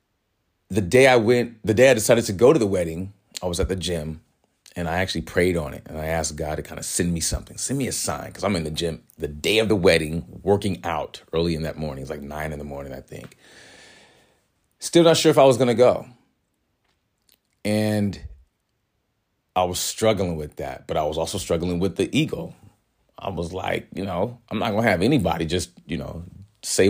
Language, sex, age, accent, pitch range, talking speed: English, male, 30-49, American, 85-110 Hz, 225 wpm